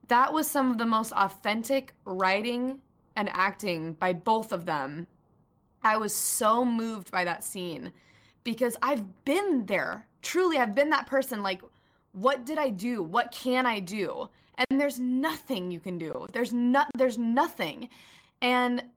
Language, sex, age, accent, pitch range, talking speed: English, female, 20-39, American, 185-245 Hz, 160 wpm